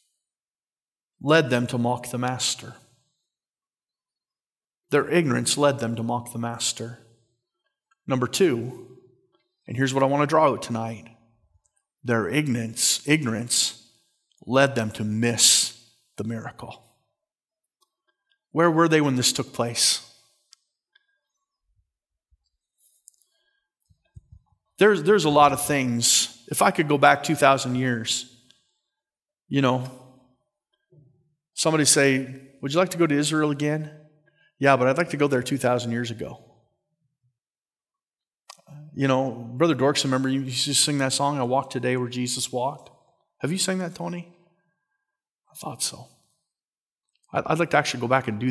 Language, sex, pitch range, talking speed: English, male, 120-155 Hz, 135 wpm